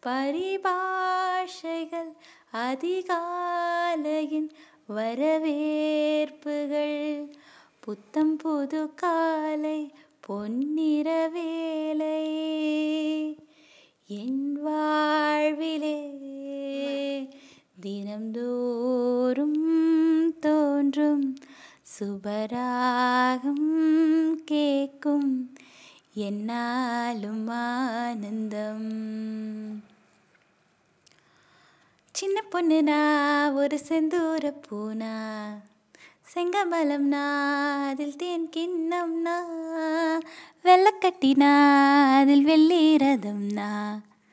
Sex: female